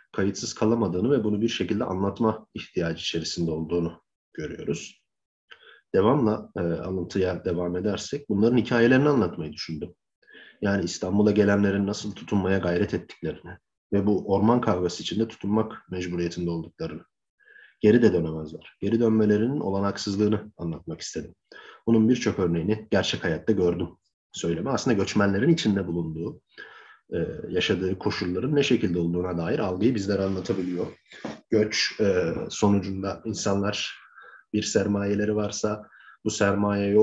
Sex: male